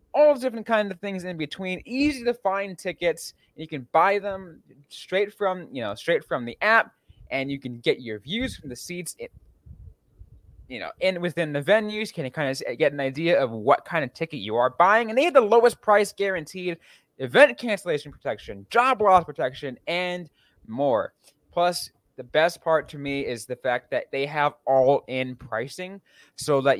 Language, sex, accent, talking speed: English, male, American, 195 wpm